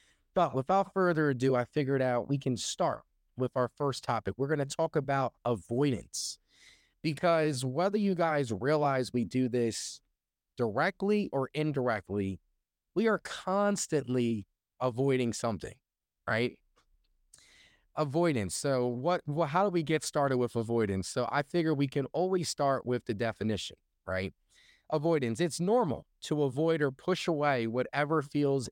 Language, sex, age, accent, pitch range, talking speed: English, male, 30-49, American, 120-155 Hz, 145 wpm